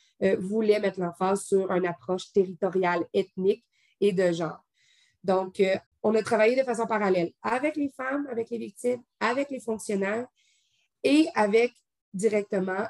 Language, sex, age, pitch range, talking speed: French, female, 30-49, 185-210 Hz, 150 wpm